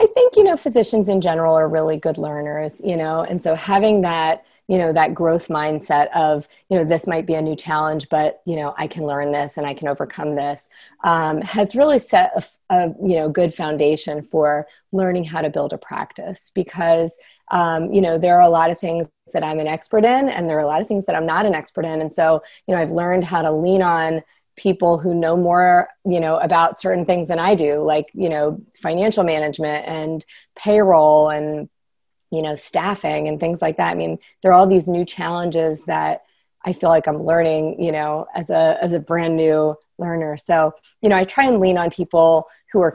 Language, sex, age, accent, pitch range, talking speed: English, female, 30-49, American, 155-180 Hz, 220 wpm